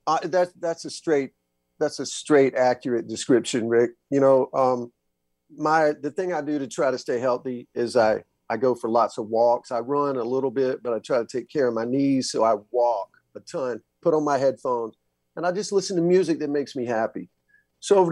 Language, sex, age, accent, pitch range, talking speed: English, male, 50-69, American, 120-170 Hz, 220 wpm